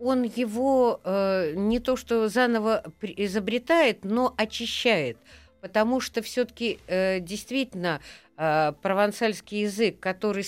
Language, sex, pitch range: Russian, female, 175-235 Hz